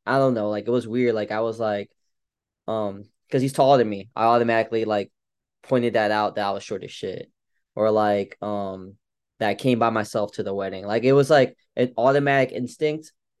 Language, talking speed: English, 205 wpm